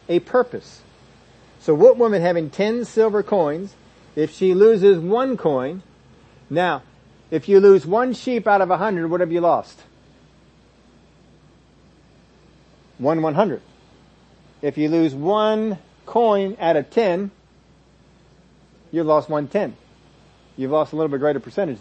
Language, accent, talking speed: English, American, 140 wpm